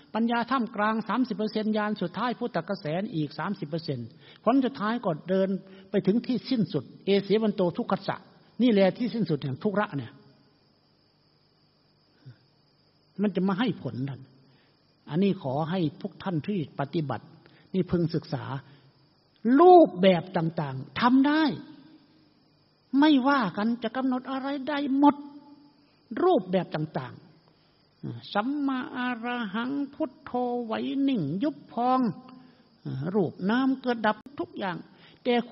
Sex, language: male, Thai